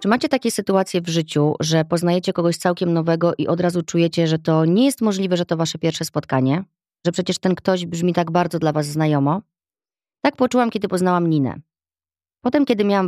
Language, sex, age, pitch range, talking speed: Polish, female, 30-49, 160-195 Hz, 195 wpm